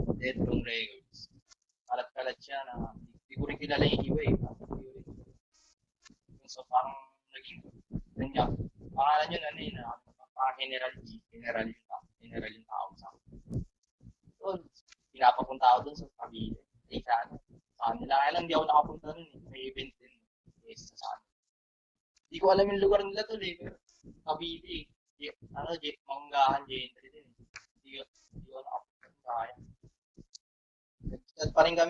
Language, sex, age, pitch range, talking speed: Filipino, male, 20-39, 130-185 Hz, 40 wpm